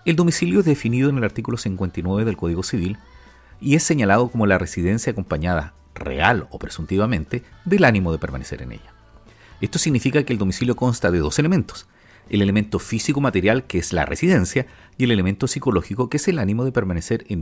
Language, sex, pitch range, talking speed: Spanish, male, 90-130 Hz, 185 wpm